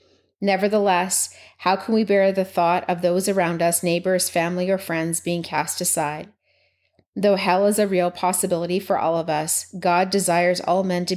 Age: 30-49